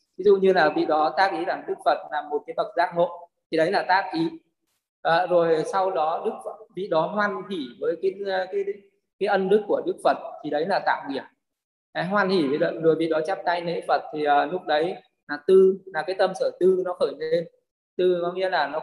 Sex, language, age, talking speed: male, Vietnamese, 20-39, 240 wpm